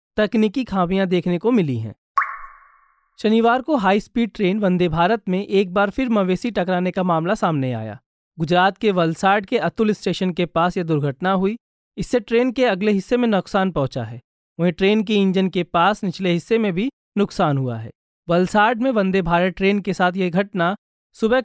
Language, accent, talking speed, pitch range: Hindi, native, 185 wpm, 175-215 Hz